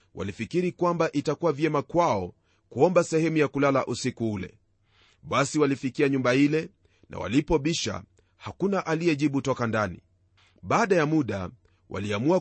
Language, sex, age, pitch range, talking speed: Swahili, male, 40-59, 110-160 Hz, 120 wpm